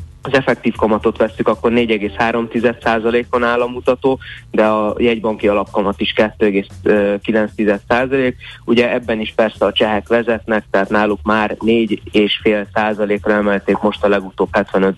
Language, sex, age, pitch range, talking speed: Hungarian, male, 20-39, 100-115 Hz, 120 wpm